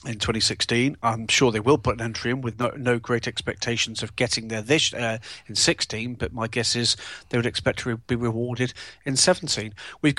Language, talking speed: English, 205 wpm